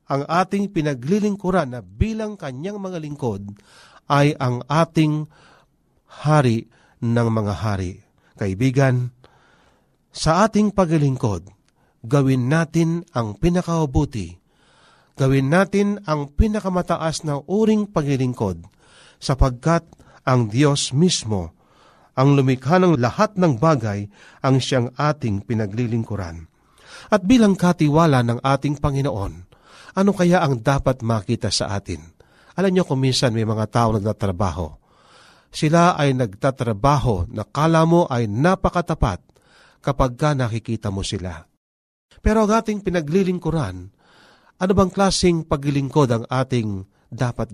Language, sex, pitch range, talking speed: Filipino, male, 115-170 Hz, 110 wpm